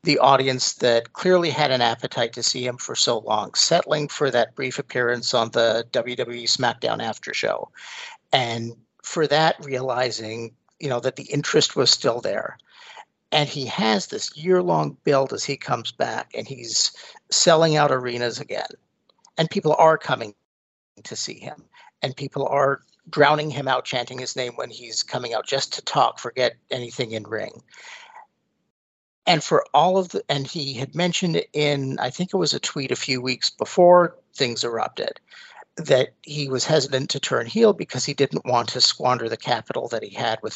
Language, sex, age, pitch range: English, male, 50-69, 125-155 Hz